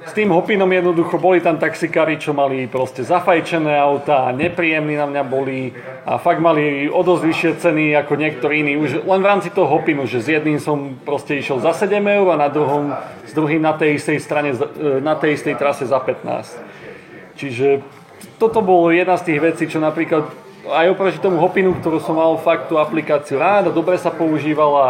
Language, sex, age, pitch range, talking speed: Slovak, male, 30-49, 145-170 Hz, 190 wpm